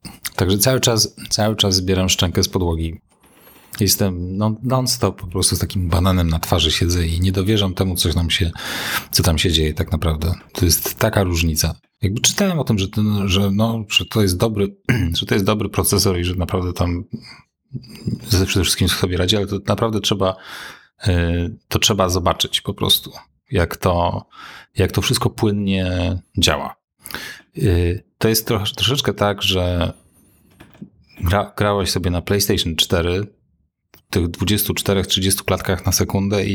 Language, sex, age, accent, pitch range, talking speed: Polish, male, 30-49, native, 90-105 Hz, 160 wpm